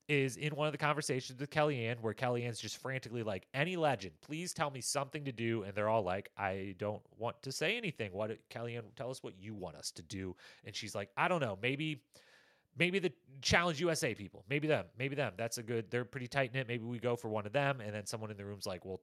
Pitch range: 105-140 Hz